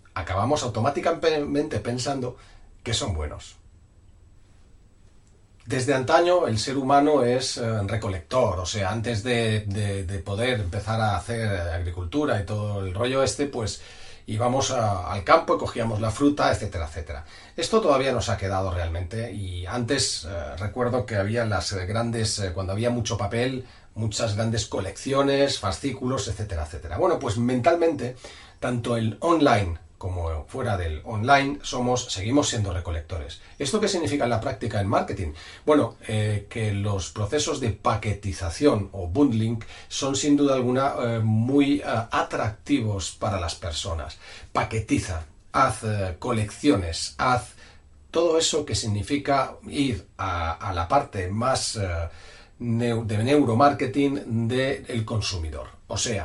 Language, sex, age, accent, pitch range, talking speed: Spanish, male, 40-59, Spanish, 95-130 Hz, 135 wpm